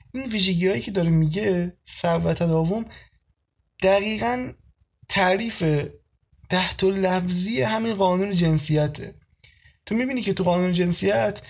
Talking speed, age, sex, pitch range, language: 110 wpm, 20-39, male, 145-185 Hz, Persian